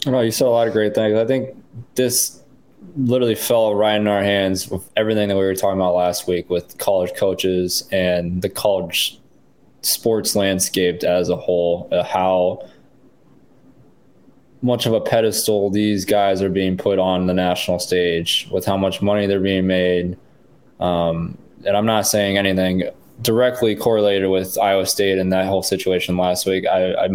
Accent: American